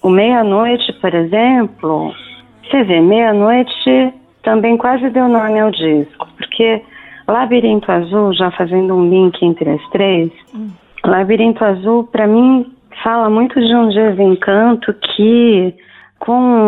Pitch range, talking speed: 175-225 Hz, 120 wpm